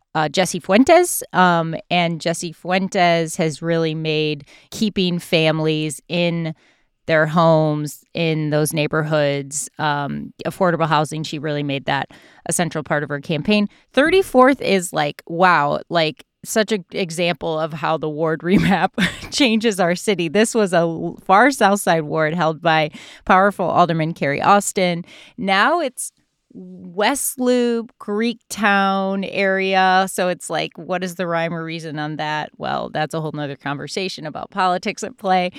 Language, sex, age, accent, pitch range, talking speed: English, female, 30-49, American, 155-190 Hz, 145 wpm